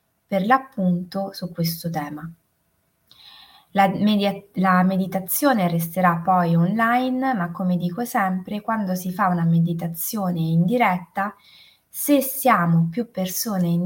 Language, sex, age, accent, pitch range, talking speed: Italian, female, 20-39, native, 170-210 Hz, 115 wpm